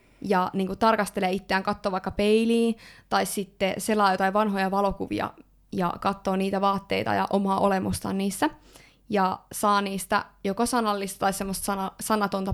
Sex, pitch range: female, 190-210 Hz